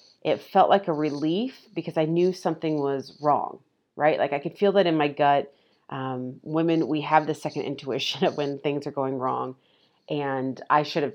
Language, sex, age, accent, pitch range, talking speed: English, female, 30-49, American, 135-160 Hz, 200 wpm